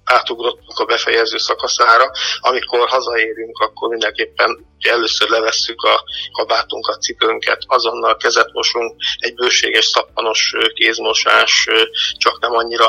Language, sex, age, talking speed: Hungarian, male, 50-69, 105 wpm